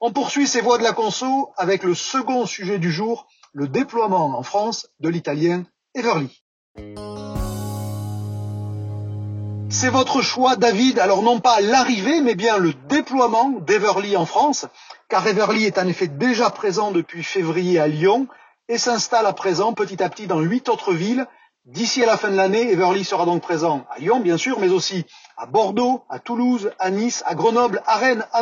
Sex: male